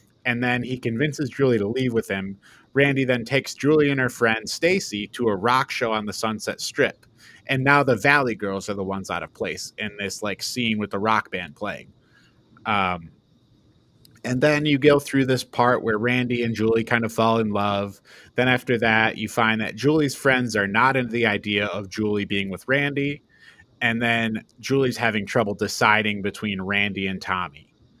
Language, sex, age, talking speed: English, male, 30-49, 195 wpm